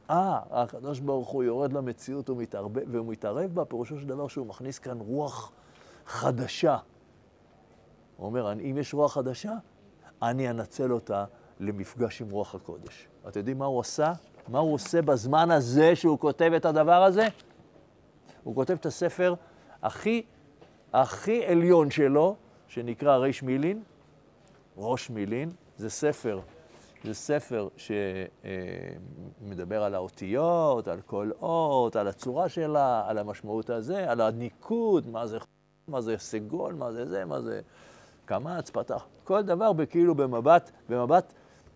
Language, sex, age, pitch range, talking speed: Hebrew, male, 50-69, 115-170 Hz, 130 wpm